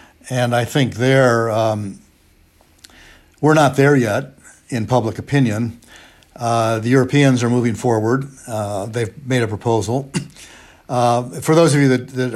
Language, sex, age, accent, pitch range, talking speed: English, male, 60-79, American, 110-125 Hz, 140 wpm